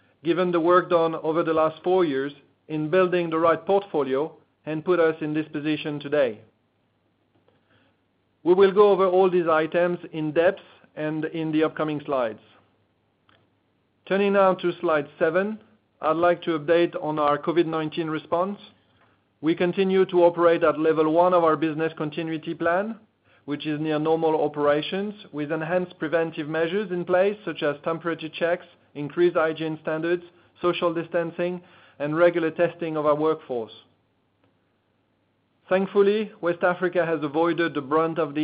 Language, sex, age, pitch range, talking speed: English, male, 40-59, 150-175 Hz, 150 wpm